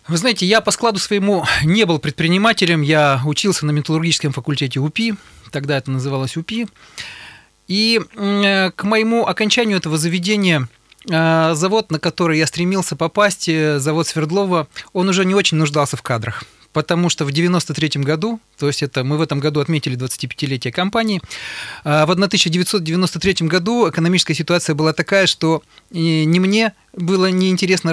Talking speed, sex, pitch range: 145 wpm, male, 145-180 Hz